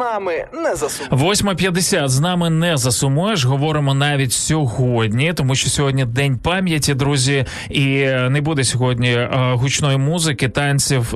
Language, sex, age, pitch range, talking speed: Ukrainian, male, 20-39, 120-145 Hz, 115 wpm